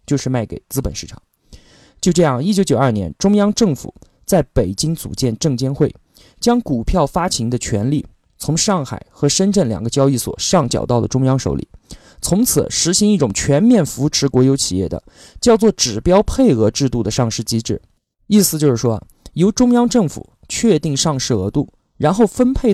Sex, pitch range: male, 115-185 Hz